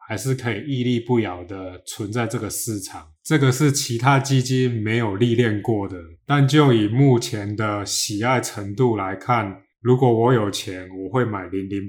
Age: 20-39